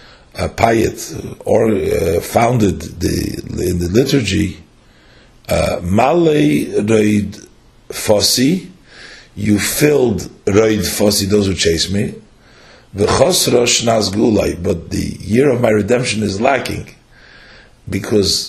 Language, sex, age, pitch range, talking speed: English, male, 50-69, 100-120 Hz, 90 wpm